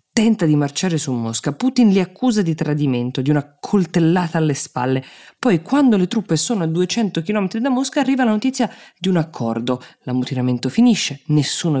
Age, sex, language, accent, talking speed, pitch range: 20-39, female, Italian, native, 175 wpm, 130-185 Hz